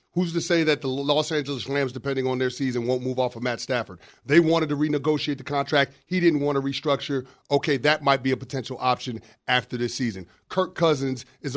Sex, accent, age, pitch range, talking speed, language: male, American, 40-59, 135-180 Hz, 220 wpm, English